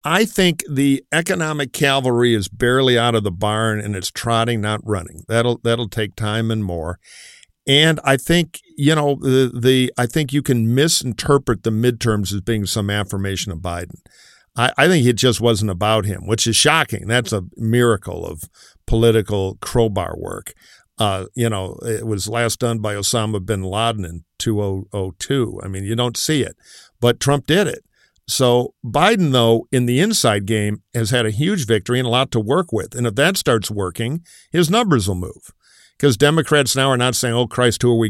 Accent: American